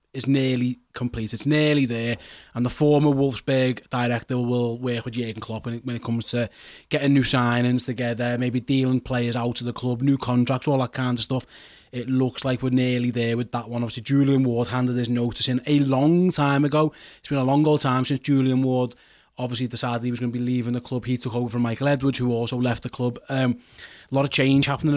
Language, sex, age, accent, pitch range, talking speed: English, male, 20-39, British, 125-140 Hz, 225 wpm